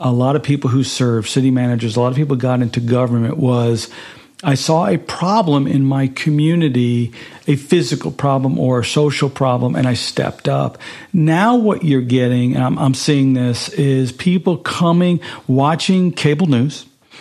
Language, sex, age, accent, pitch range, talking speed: English, male, 50-69, American, 125-150 Hz, 165 wpm